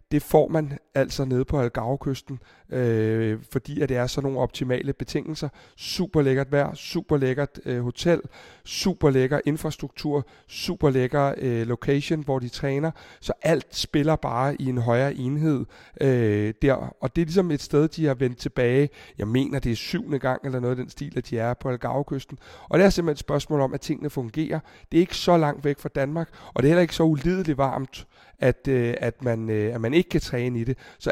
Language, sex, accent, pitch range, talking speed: Danish, male, native, 125-150 Hz, 205 wpm